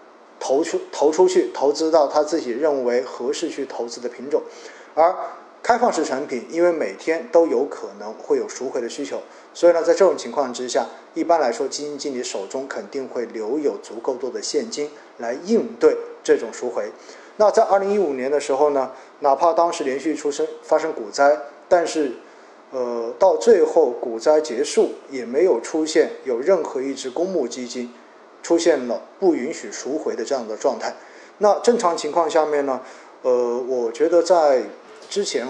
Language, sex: Chinese, male